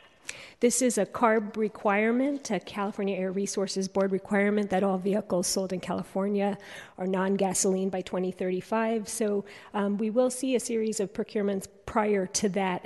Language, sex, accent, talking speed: English, female, American, 155 wpm